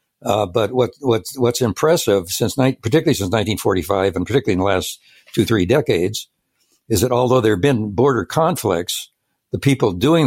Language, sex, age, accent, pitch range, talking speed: English, male, 60-79, American, 100-125 Hz, 175 wpm